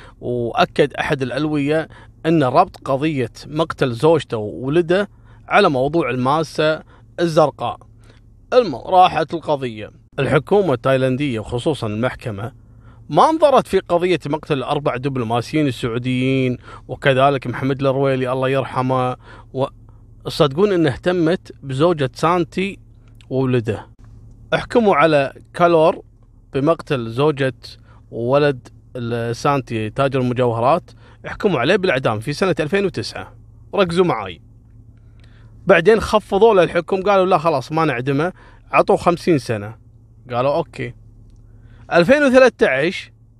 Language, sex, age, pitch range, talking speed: Arabic, male, 30-49, 115-170 Hz, 95 wpm